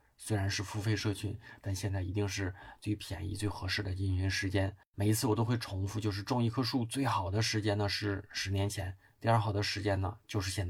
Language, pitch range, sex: Chinese, 95-110 Hz, male